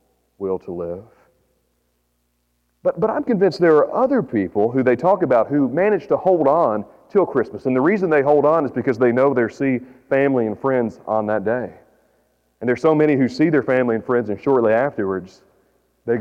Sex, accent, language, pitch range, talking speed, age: male, American, English, 105-140 Hz, 200 wpm, 40-59